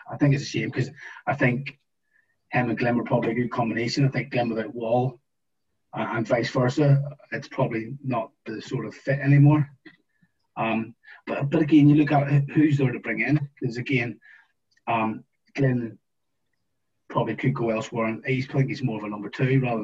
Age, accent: 30-49, British